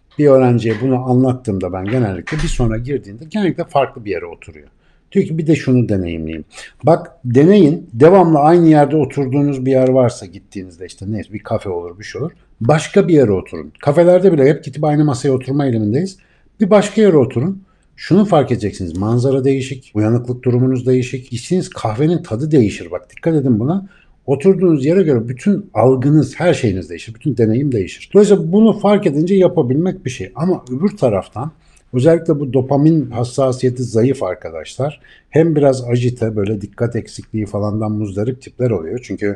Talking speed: 165 wpm